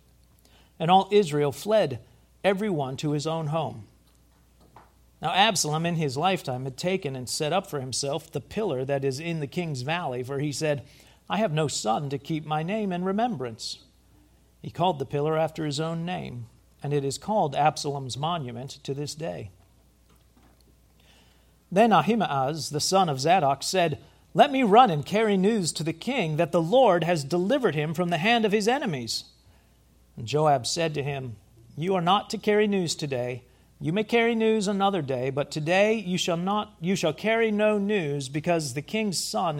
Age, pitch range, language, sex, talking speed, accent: 40-59, 130-190 Hz, English, male, 180 wpm, American